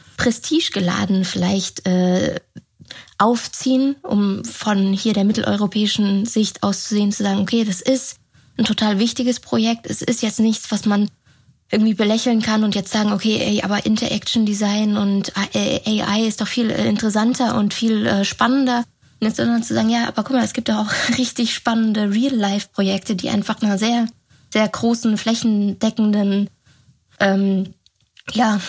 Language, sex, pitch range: German, female, 195-220 Hz